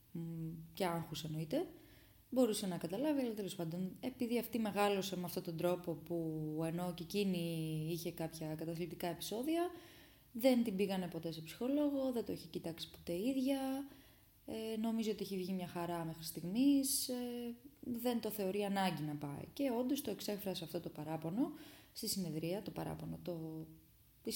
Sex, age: female, 20-39